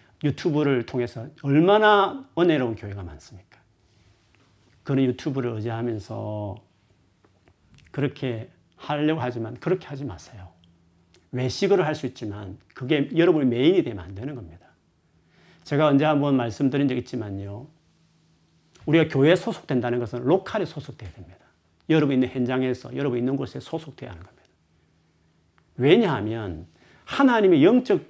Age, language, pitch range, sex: 40-59, Korean, 115-160 Hz, male